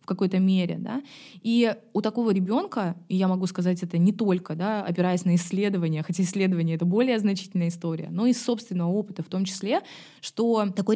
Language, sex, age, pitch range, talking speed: Russian, female, 20-39, 175-210 Hz, 185 wpm